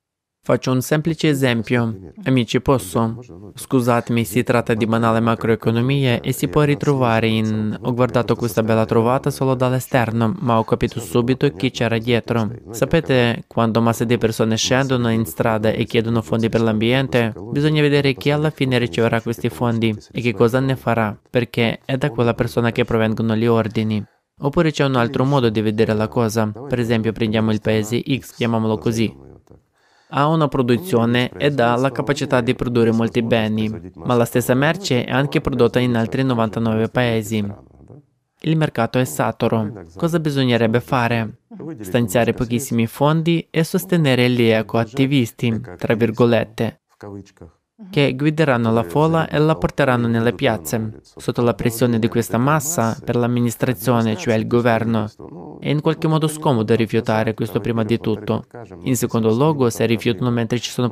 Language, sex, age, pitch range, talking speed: Italian, male, 20-39, 115-130 Hz, 155 wpm